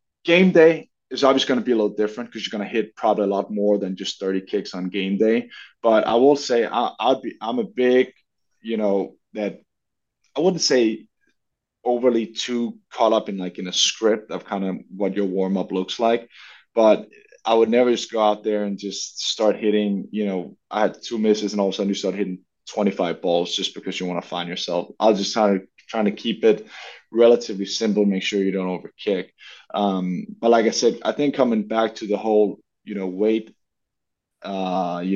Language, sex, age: English, male, 20-39